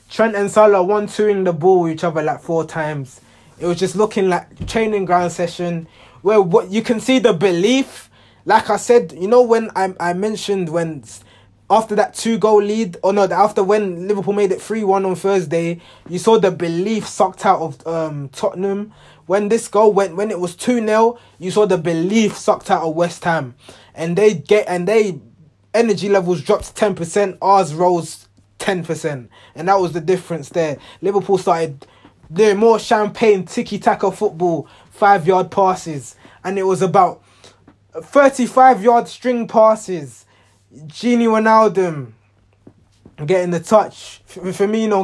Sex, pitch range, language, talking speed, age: male, 160-210 Hz, English, 165 wpm, 20-39